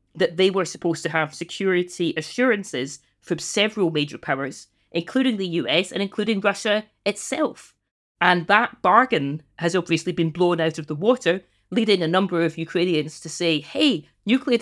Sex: female